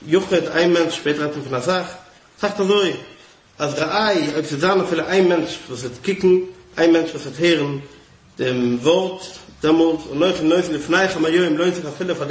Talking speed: 110 wpm